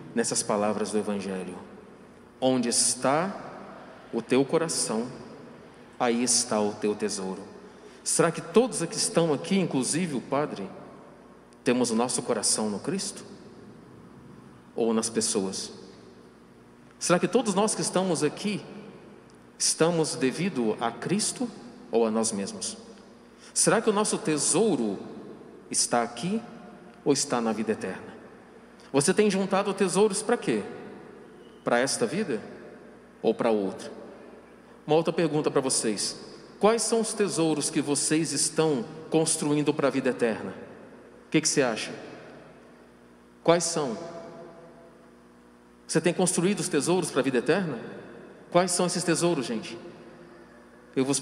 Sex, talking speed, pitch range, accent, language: male, 130 wpm, 110-180 Hz, Brazilian, Portuguese